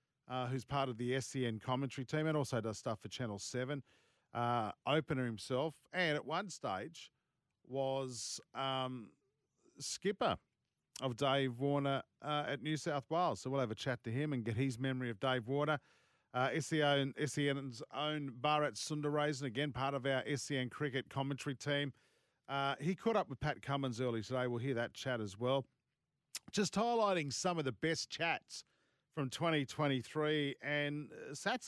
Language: English